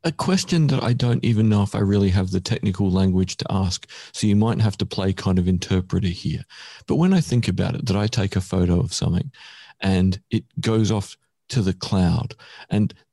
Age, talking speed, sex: 40-59, 215 wpm, male